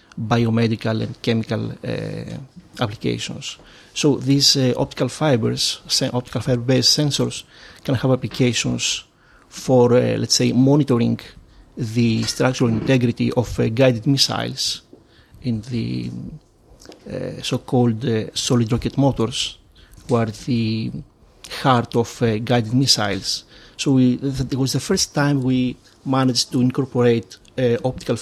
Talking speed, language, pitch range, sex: 125 wpm, English, 115-135 Hz, male